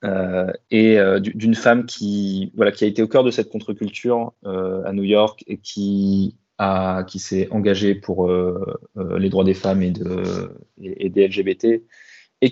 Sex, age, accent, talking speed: male, 20-39, French, 185 wpm